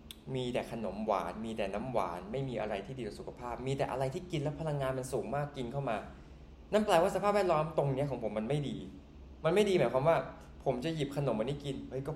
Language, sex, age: Thai, male, 20-39